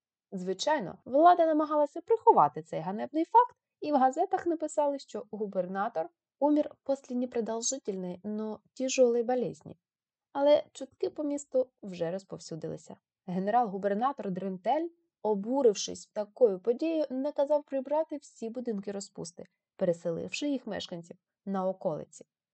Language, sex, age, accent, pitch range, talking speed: Ukrainian, female, 20-39, native, 190-280 Hz, 105 wpm